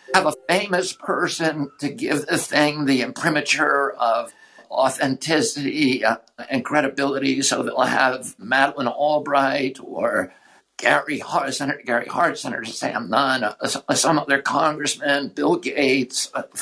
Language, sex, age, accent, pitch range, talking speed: English, male, 60-79, American, 140-175 Hz, 135 wpm